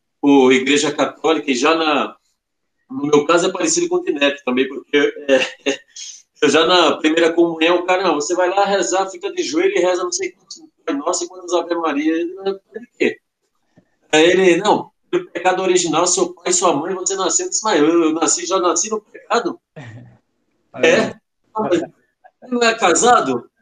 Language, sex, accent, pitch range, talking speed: Portuguese, male, Brazilian, 160-265 Hz, 180 wpm